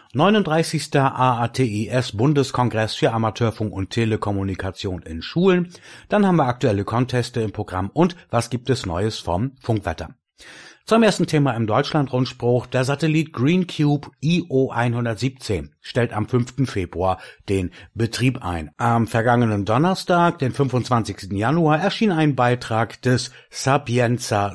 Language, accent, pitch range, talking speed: German, German, 105-140 Hz, 120 wpm